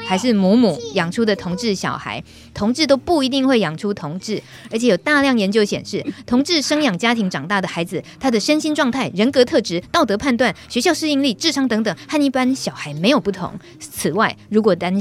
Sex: female